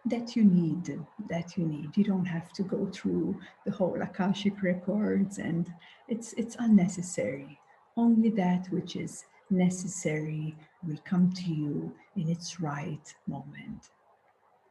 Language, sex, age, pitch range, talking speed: English, female, 50-69, 165-200 Hz, 135 wpm